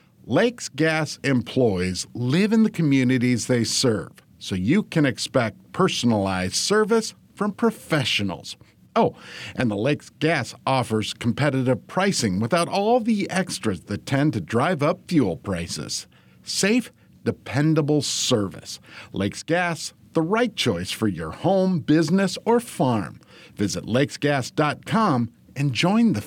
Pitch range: 115-170 Hz